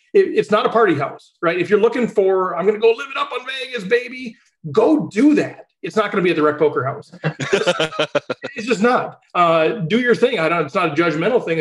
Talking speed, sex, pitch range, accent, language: 235 wpm, male, 155-205 Hz, American, English